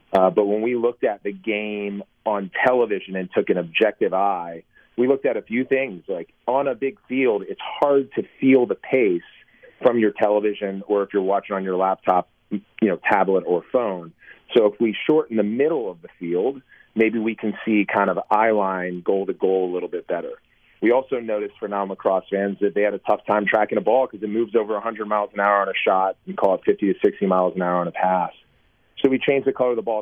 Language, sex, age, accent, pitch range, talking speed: English, male, 30-49, American, 95-115 Hz, 235 wpm